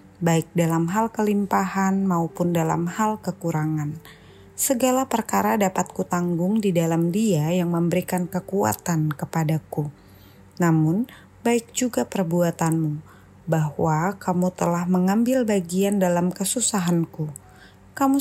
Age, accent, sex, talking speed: 20-39, native, female, 105 wpm